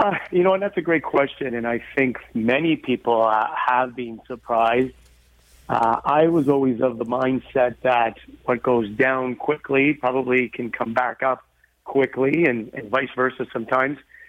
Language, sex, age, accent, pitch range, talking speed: English, male, 40-59, American, 120-135 Hz, 170 wpm